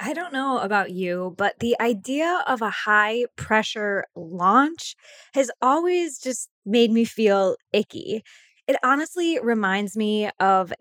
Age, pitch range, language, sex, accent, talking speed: 20-39, 190-255 Hz, English, female, American, 135 wpm